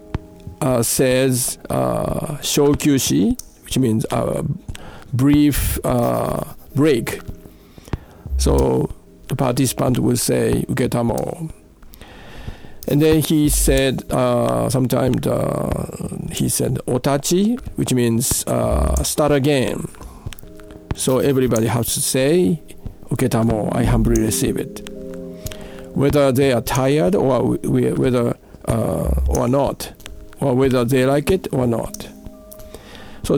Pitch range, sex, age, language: 105-145 Hz, male, 50-69, Japanese